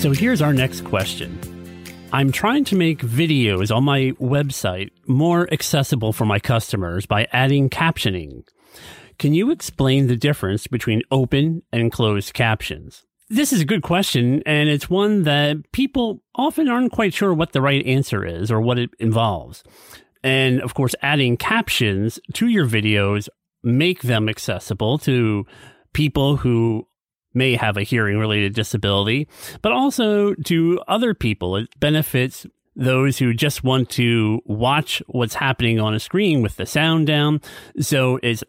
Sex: male